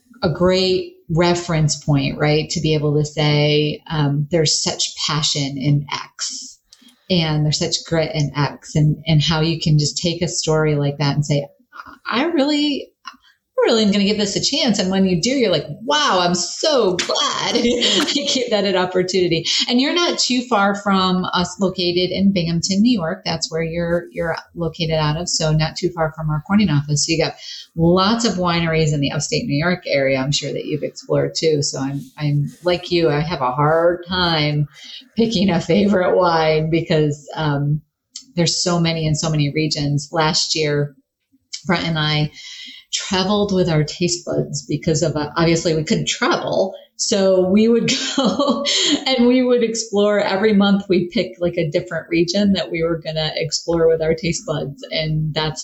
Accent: American